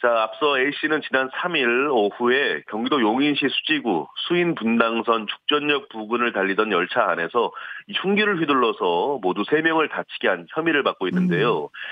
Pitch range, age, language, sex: 120-170 Hz, 40-59, Korean, male